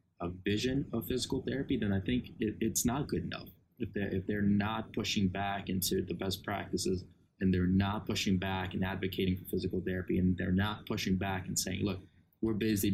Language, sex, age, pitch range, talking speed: English, male, 20-39, 95-115 Hz, 195 wpm